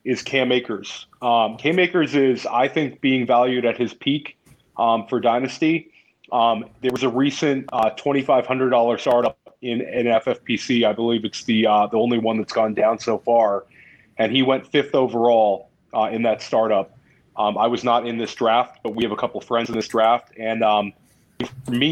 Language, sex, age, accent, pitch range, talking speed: English, male, 30-49, American, 115-135 Hz, 195 wpm